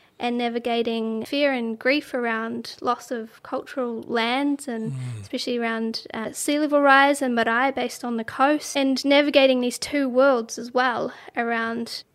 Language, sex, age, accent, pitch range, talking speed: English, female, 20-39, Australian, 230-270 Hz, 155 wpm